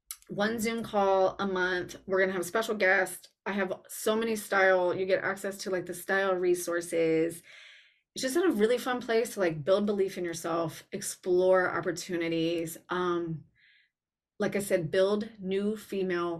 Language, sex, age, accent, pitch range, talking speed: English, female, 20-39, American, 170-200 Hz, 170 wpm